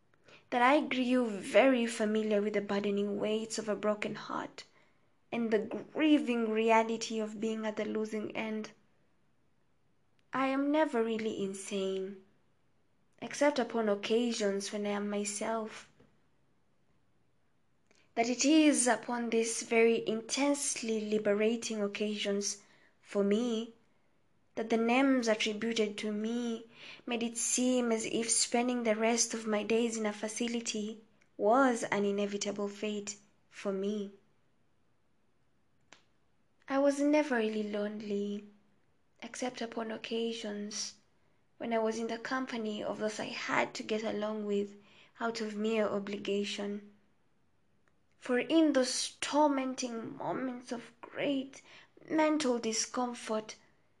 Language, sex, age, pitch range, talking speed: English, female, 20-39, 210-245 Hz, 120 wpm